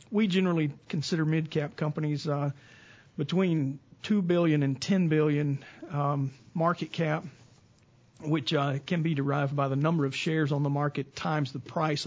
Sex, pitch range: male, 145-165 Hz